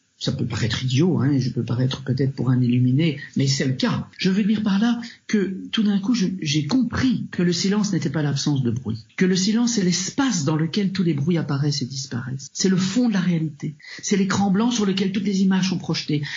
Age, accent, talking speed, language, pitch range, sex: 50-69, French, 240 wpm, French, 135-190 Hz, male